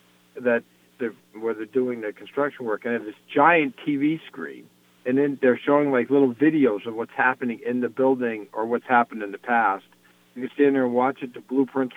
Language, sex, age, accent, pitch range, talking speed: English, male, 50-69, American, 115-135 Hz, 220 wpm